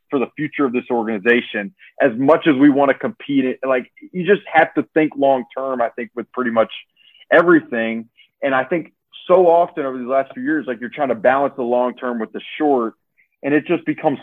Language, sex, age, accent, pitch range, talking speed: English, male, 30-49, American, 130-155 Hz, 210 wpm